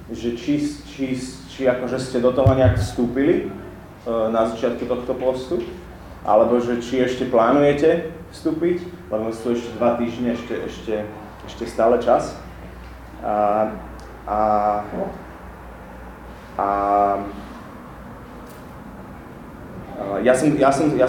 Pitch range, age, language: 105-130 Hz, 30-49, Slovak